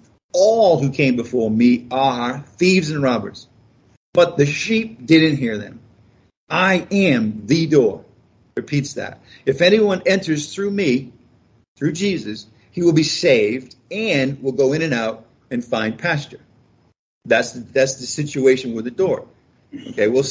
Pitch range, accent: 120-165 Hz, American